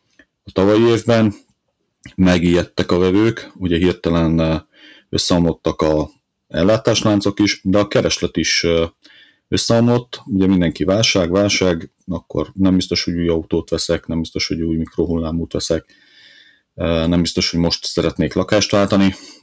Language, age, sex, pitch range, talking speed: Hungarian, 40-59, male, 85-95 Hz, 125 wpm